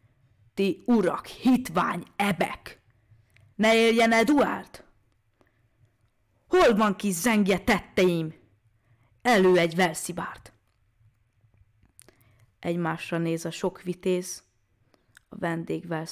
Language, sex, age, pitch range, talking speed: Hungarian, female, 30-49, 110-185 Hz, 80 wpm